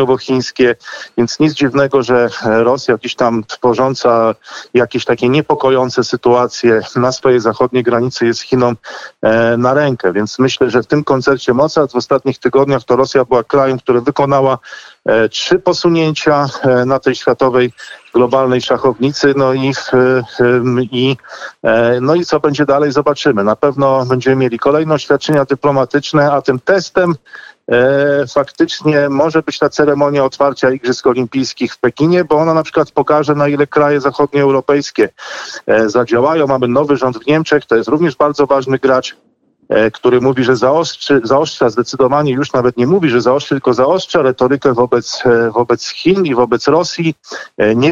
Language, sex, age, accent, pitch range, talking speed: Polish, male, 40-59, native, 125-150 Hz, 145 wpm